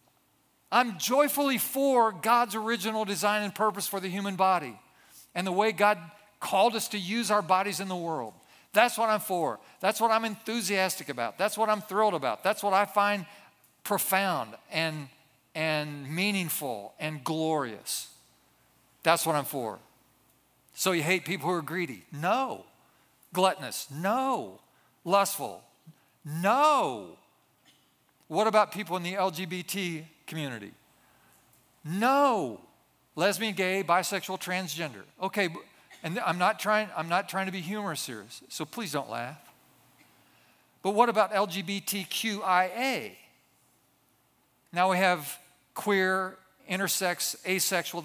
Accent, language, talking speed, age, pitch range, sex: American, English, 130 wpm, 50-69, 170-210 Hz, male